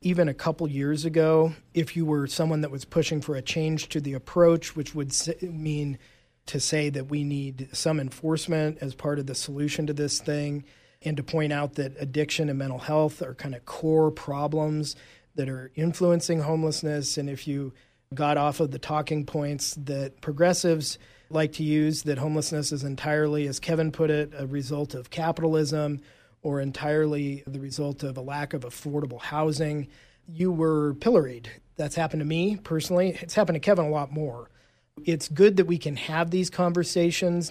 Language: English